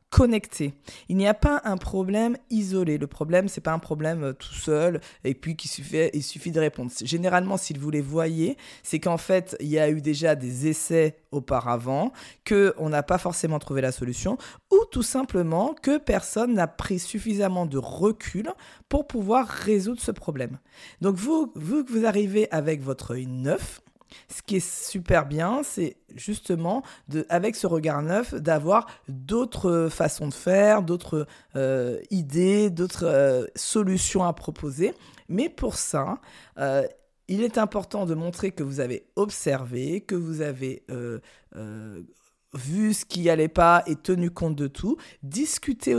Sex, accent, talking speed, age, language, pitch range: female, French, 165 wpm, 20-39, French, 150-205 Hz